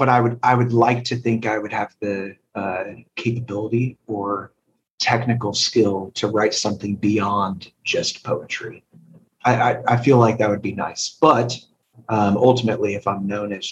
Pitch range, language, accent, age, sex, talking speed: 105-120 Hz, English, American, 30-49, male, 170 wpm